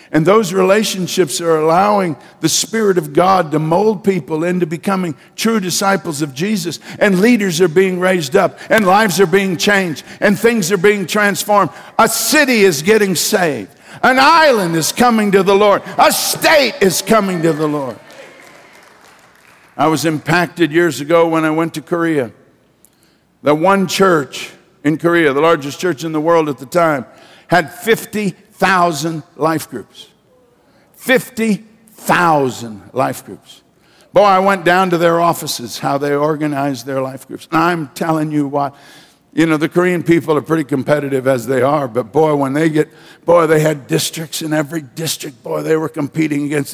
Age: 50-69